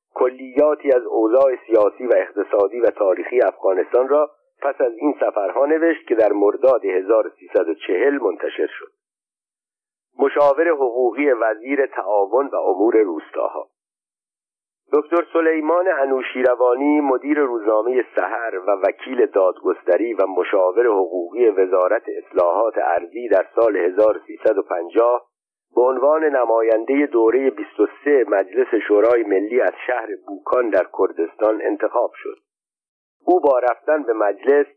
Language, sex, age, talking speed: Persian, male, 50-69, 115 wpm